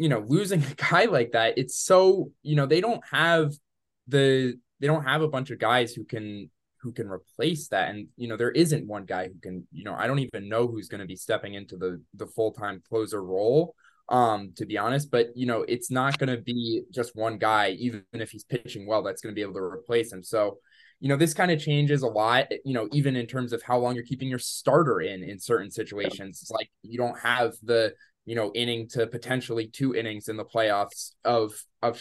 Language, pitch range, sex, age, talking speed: English, 110-140 Hz, male, 20-39, 235 wpm